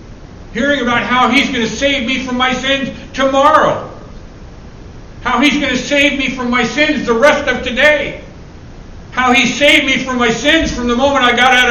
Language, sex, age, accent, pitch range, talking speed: English, male, 60-79, American, 220-280 Hz, 195 wpm